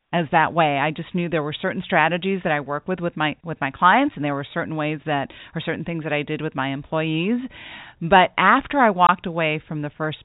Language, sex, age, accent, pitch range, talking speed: English, female, 40-59, American, 155-195 Hz, 245 wpm